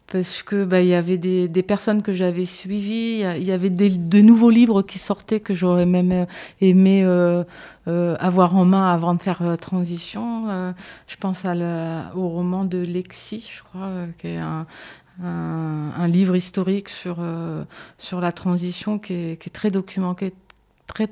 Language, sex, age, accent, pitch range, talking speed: French, female, 30-49, French, 175-195 Hz, 180 wpm